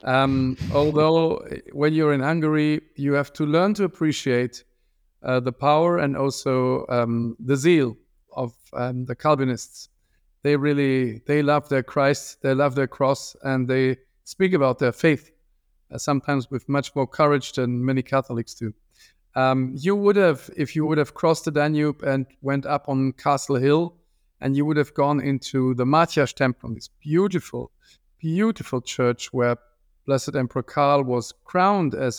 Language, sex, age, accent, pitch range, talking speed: English, male, 50-69, German, 125-155 Hz, 160 wpm